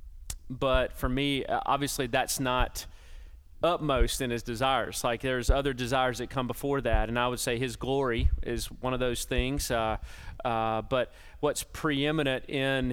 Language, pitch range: English, 85-130 Hz